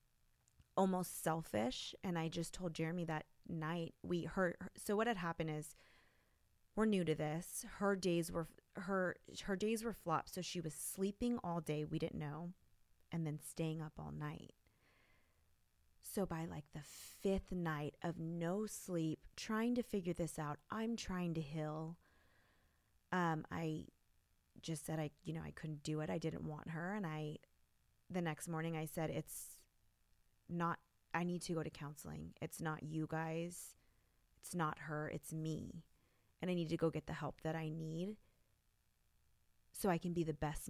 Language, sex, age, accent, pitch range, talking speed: English, female, 20-39, American, 155-180 Hz, 175 wpm